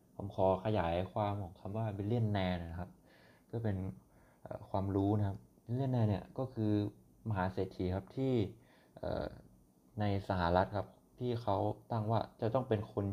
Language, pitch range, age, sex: Thai, 90-110 Hz, 20-39, male